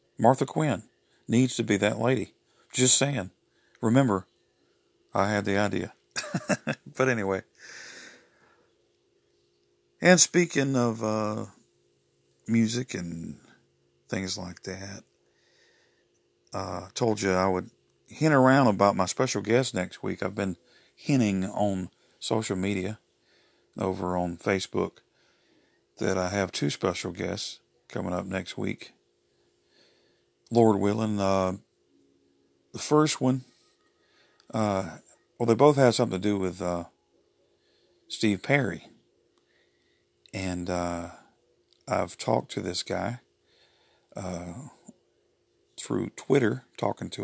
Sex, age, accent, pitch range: male, 50-69, American, 90-125 Hz